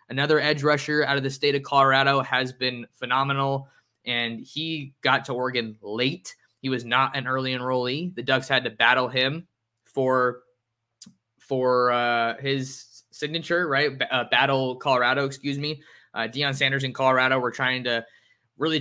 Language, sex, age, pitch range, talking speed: English, male, 20-39, 120-140 Hz, 165 wpm